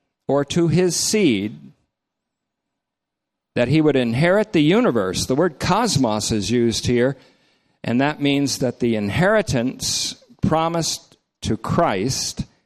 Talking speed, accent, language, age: 120 wpm, American, English, 50-69